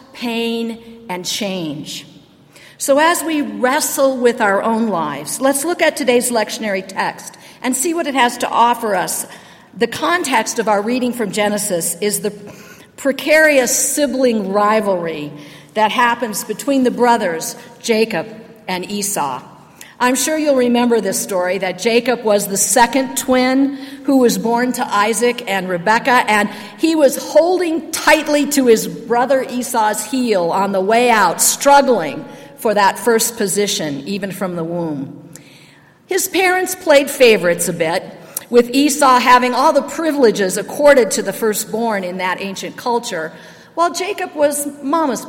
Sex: female